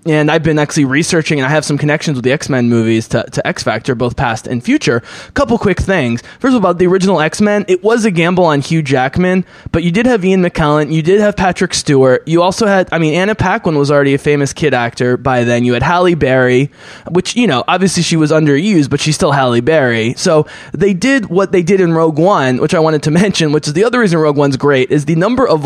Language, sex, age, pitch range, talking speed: English, male, 20-39, 135-175 Hz, 250 wpm